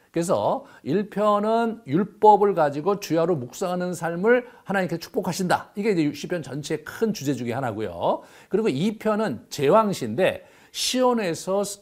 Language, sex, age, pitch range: Korean, male, 50-69, 135-205 Hz